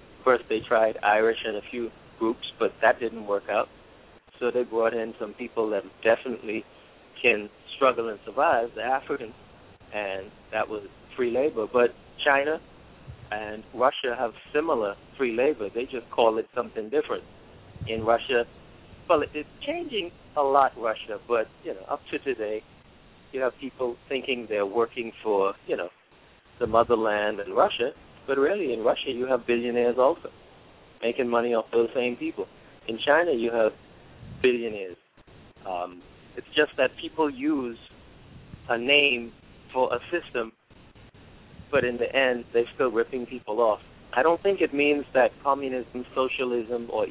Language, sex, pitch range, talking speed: English, male, 110-130 Hz, 155 wpm